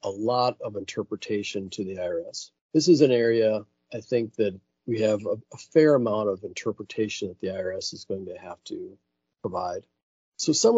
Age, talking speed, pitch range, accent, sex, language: 50-69, 185 wpm, 100-145 Hz, American, male, English